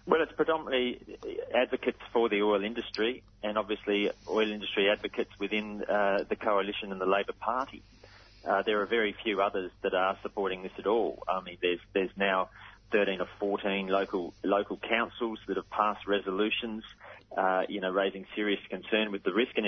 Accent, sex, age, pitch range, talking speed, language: Australian, male, 30-49, 95-110 Hz, 175 wpm, English